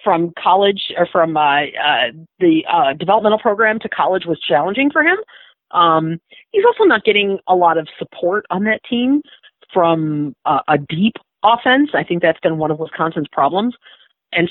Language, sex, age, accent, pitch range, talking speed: English, female, 40-59, American, 160-235 Hz, 175 wpm